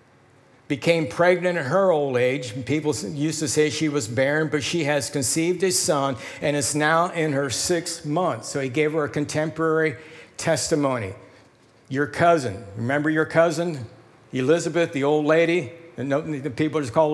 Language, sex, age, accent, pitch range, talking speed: English, male, 60-79, American, 140-165 Hz, 160 wpm